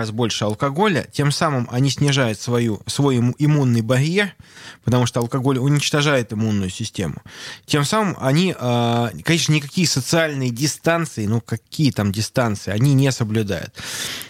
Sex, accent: male, native